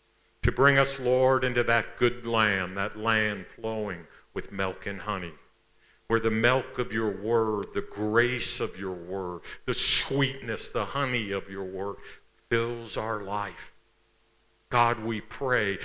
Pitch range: 100-125 Hz